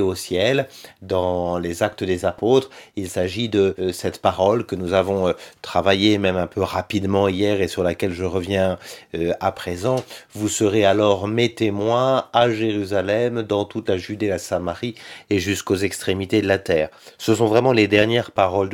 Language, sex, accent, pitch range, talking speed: French, male, French, 95-115 Hz, 180 wpm